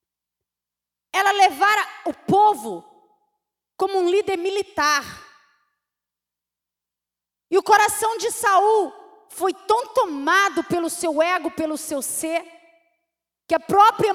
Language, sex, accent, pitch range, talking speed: English, female, Brazilian, 320-410 Hz, 105 wpm